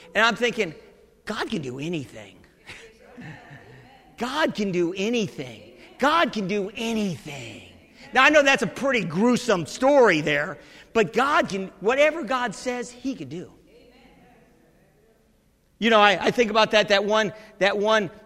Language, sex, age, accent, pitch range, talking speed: English, male, 50-69, American, 180-220 Hz, 140 wpm